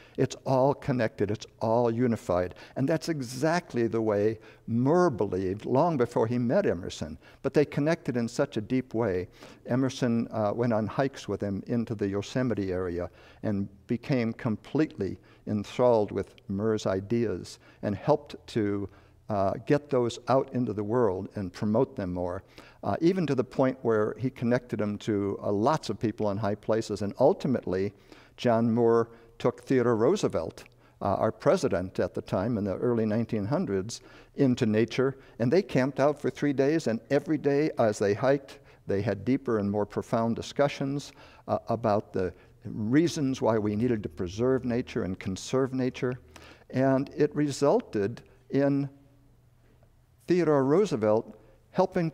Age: 60-79